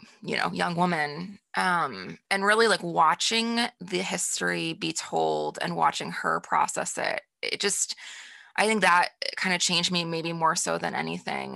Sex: female